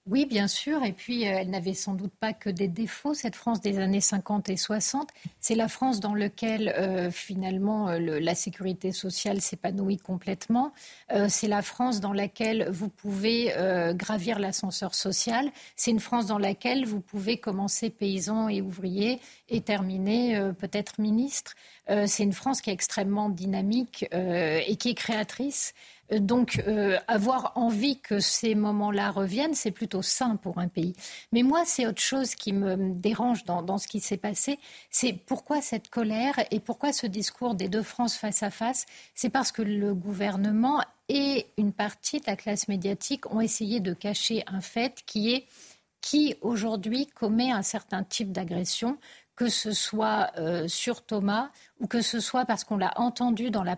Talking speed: 175 wpm